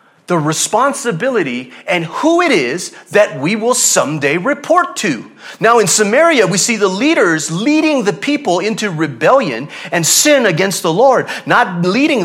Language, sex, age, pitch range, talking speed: English, male, 30-49, 170-250 Hz, 150 wpm